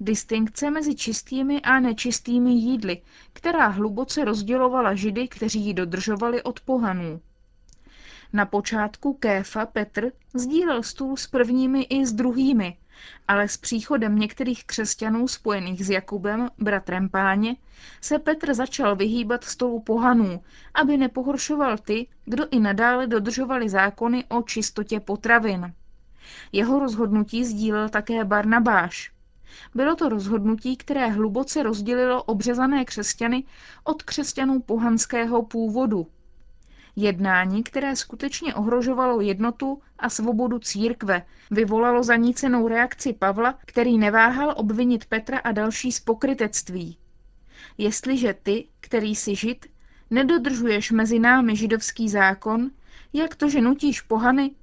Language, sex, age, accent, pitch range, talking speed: Czech, female, 20-39, native, 215-260 Hz, 115 wpm